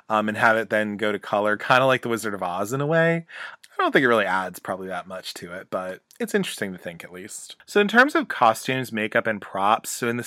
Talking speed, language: 275 wpm, English